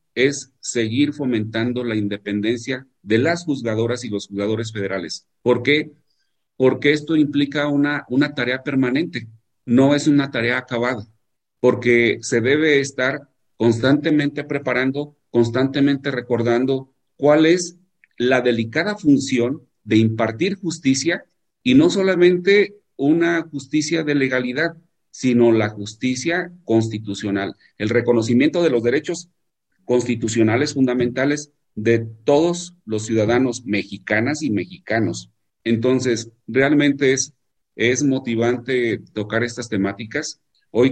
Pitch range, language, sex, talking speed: 110-140 Hz, Spanish, male, 110 wpm